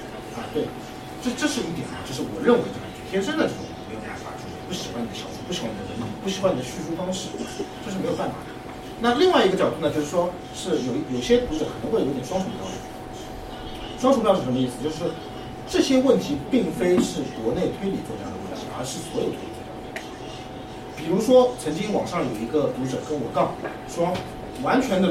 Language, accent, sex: Chinese, native, male